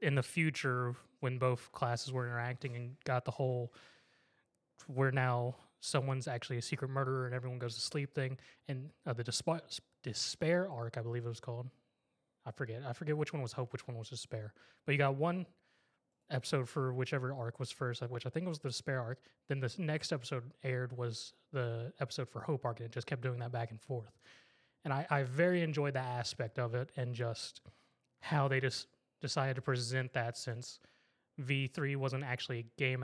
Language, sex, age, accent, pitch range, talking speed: English, male, 20-39, American, 120-135 Hz, 195 wpm